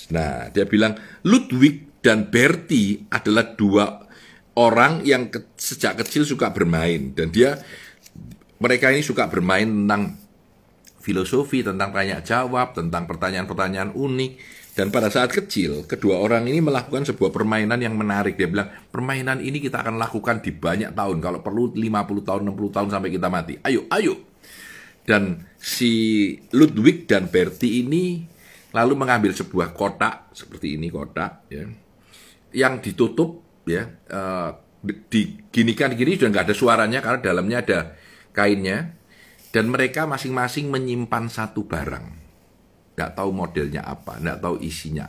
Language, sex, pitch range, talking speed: Indonesian, male, 90-125 Hz, 135 wpm